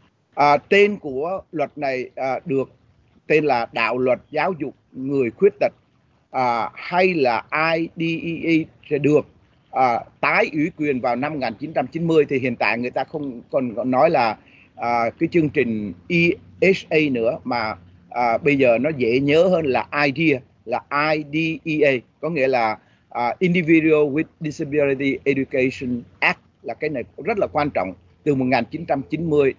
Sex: male